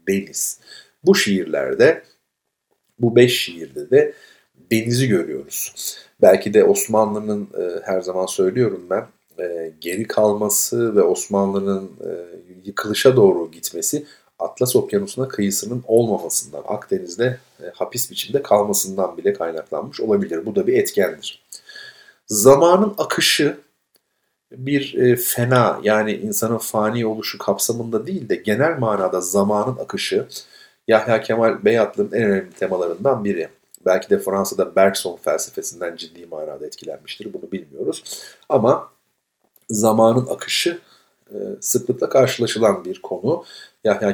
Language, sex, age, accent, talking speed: Turkish, male, 50-69, native, 110 wpm